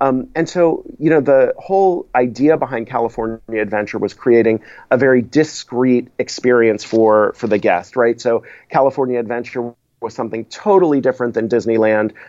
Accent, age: American, 30-49